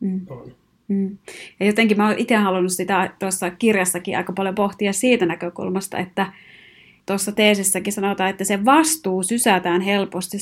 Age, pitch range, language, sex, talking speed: 30-49, 185-205 Hz, Finnish, female, 145 wpm